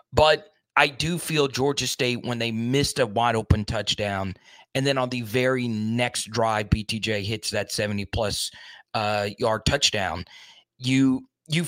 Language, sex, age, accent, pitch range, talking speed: English, male, 30-49, American, 105-135 Hz, 155 wpm